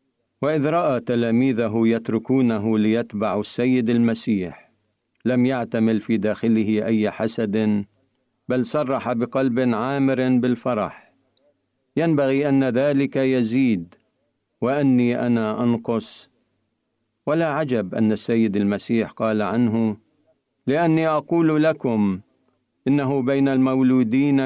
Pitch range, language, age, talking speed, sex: 110-135 Hz, Arabic, 50-69, 95 wpm, male